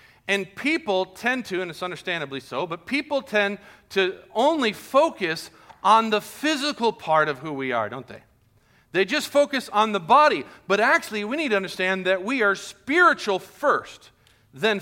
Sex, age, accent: male, 40-59, American